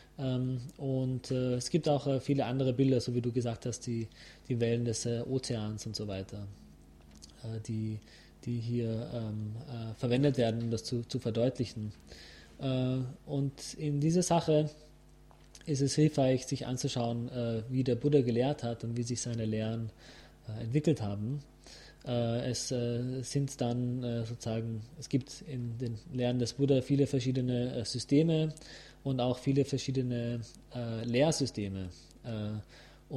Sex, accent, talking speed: male, German, 155 wpm